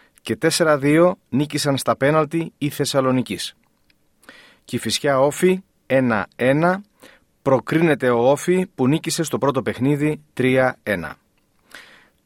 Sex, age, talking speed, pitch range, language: male, 40-59, 95 wpm, 115-160 Hz, Greek